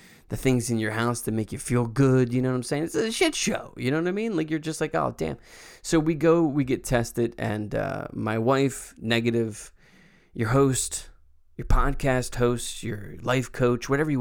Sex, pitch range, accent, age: male, 110-140 Hz, American, 20-39